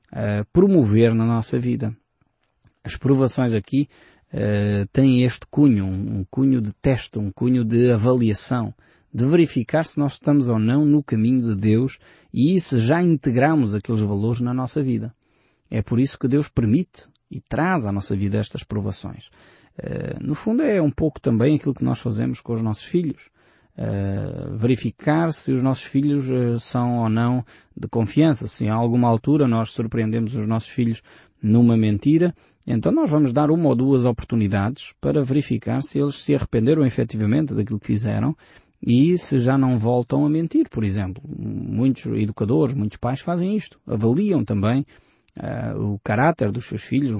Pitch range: 110-145 Hz